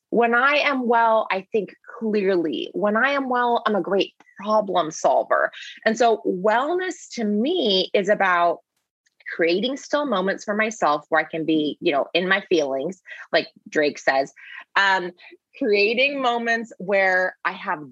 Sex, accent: female, American